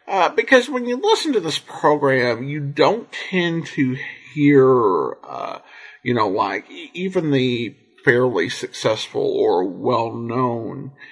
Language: English